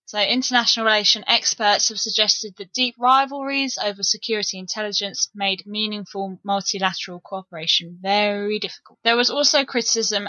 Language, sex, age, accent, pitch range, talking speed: English, female, 10-29, British, 195-225 Hz, 130 wpm